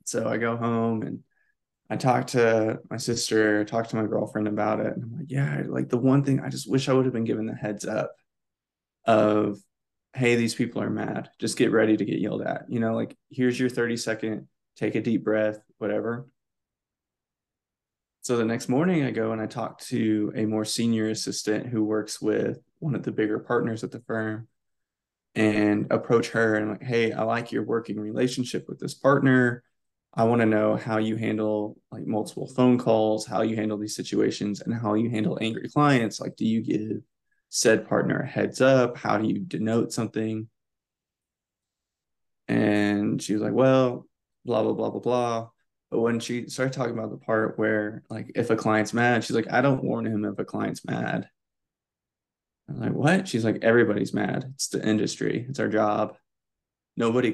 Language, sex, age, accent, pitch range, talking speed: English, male, 20-39, American, 105-120 Hz, 190 wpm